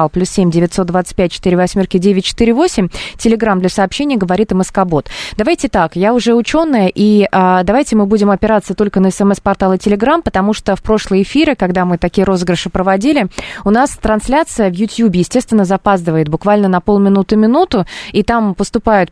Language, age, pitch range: Russian, 20-39, 185-225 Hz